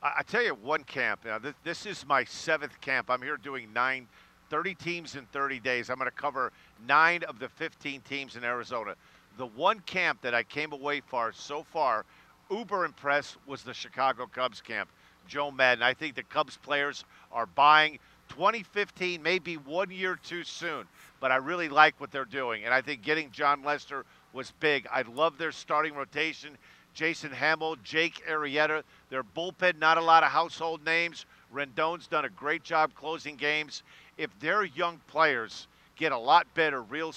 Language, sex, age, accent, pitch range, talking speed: English, male, 50-69, American, 135-165 Hz, 180 wpm